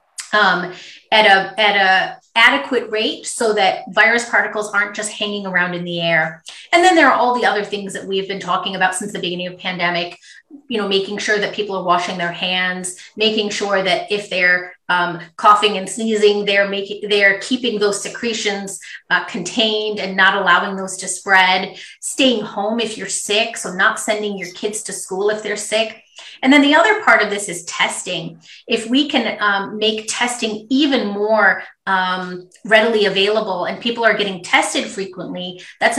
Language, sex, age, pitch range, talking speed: Arabic, female, 30-49, 190-225 Hz, 180 wpm